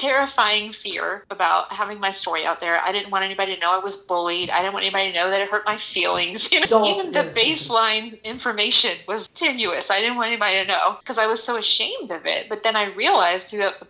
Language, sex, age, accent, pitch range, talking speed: English, female, 30-49, American, 185-235 Hz, 230 wpm